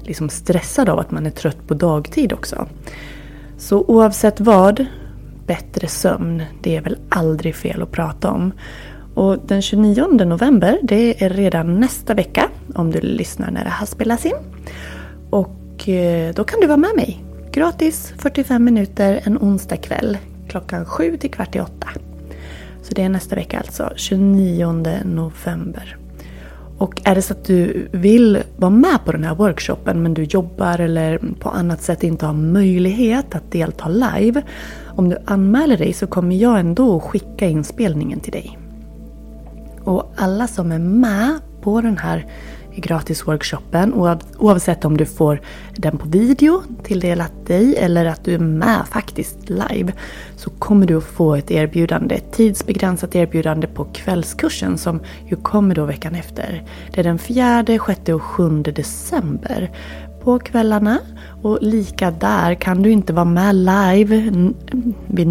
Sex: female